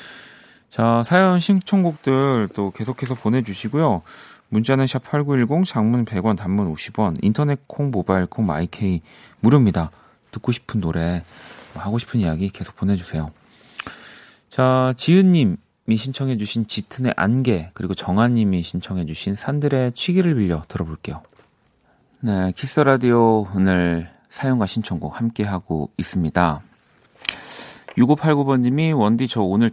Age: 40-59